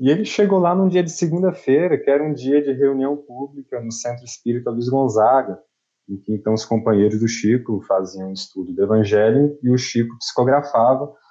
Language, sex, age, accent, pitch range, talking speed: Portuguese, male, 20-39, Brazilian, 110-150 Hz, 190 wpm